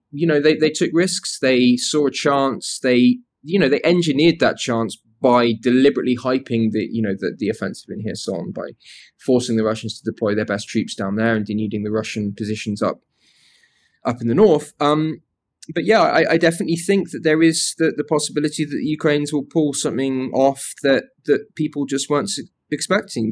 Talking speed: 195 wpm